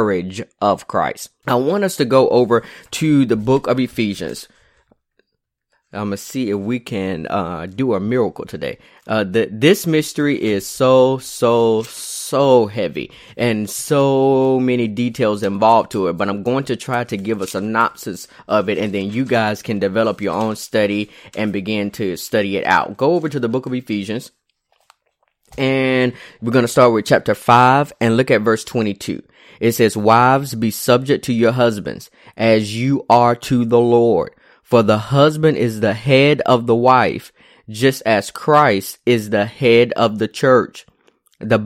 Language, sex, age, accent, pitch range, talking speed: English, male, 20-39, American, 110-130 Hz, 170 wpm